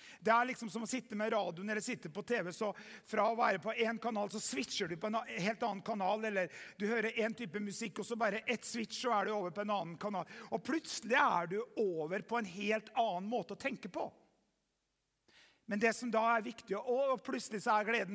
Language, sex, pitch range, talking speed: English, male, 200-235 Hz, 235 wpm